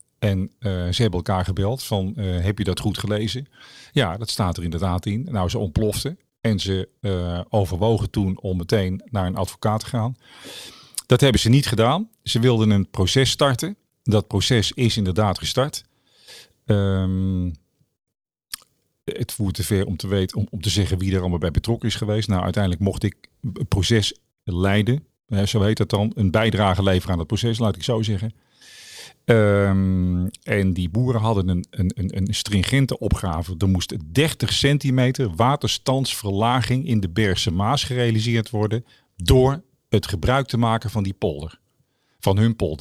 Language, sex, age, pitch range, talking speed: Dutch, male, 40-59, 95-120 Hz, 170 wpm